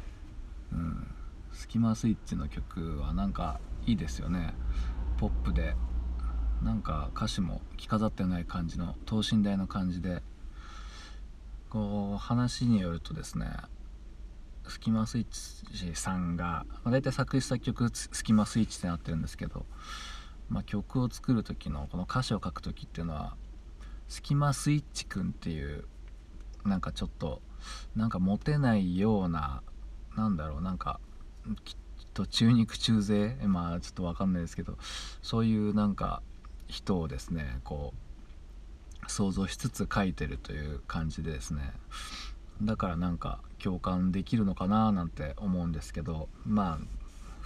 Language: Japanese